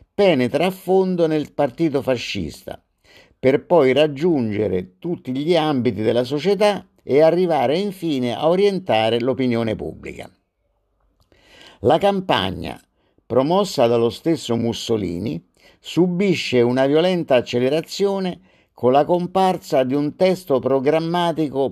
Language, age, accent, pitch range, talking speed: Italian, 50-69, native, 125-165 Hz, 105 wpm